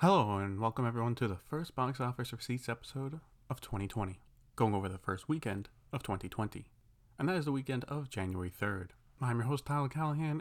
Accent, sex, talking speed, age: American, male, 190 wpm, 30-49